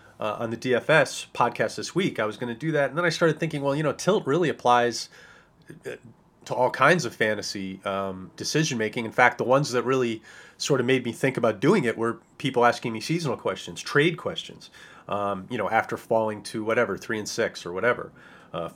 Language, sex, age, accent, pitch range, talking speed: English, male, 30-49, American, 110-140 Hz, 210 wpm